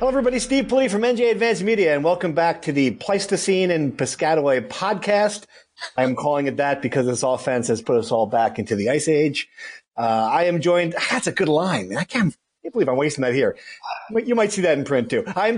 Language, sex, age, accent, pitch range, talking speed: English, male, 40-59, American, 130-170 Hz, 230 wpm